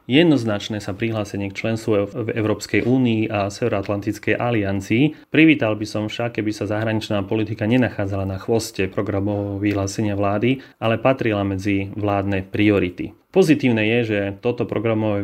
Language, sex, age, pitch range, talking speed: Slovak, male, 30-49, 100-115 Hz, 140 wpm